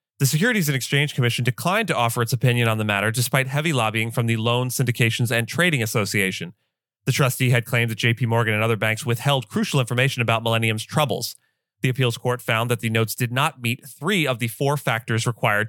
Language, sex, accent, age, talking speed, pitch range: English, male, American, 30-49, 210 wpm, 115-135 Hz